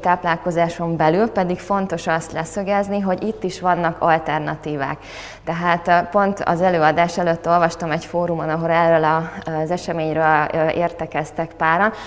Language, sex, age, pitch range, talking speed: Hungarian, female, 20-39, 155-175 Hz, 125 wpm